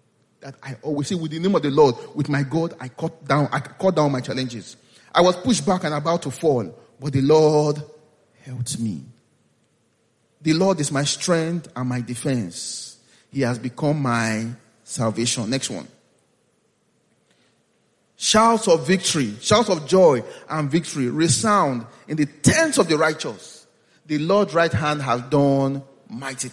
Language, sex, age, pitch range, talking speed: English, male, 30-49, 135-170 Hz, 155 wpm